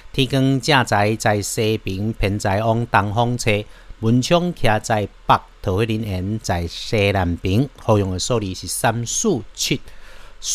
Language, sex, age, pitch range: Chinese, male, 50-69, 105-140 Hz